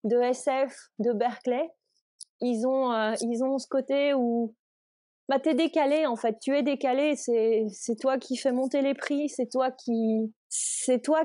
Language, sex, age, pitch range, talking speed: French, female, 30-49, 215-265 Hz, 180 wpm